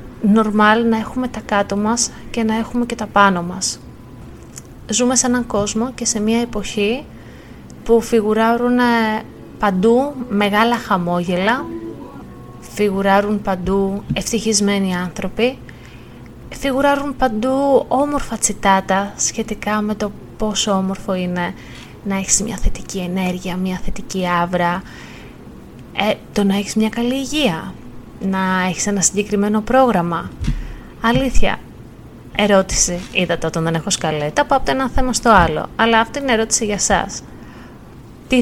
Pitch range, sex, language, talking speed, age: 180-225 Hz, female, Greek, 125 wpm, 20-39